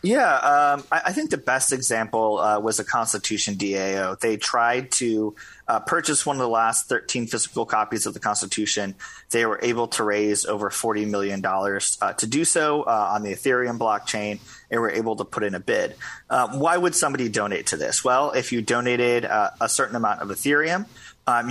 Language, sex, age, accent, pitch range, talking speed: English, male, 30-49, American, 105-125 Hz, 200 wpm